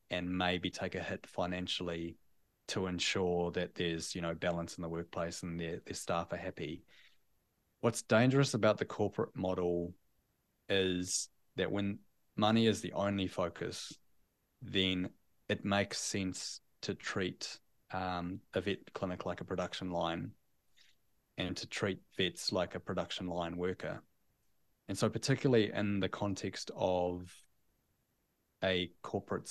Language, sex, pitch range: English, male, 90-100 Hz